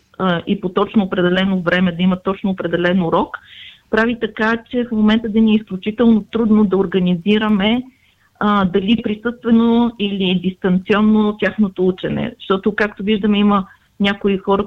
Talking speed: 145 wpm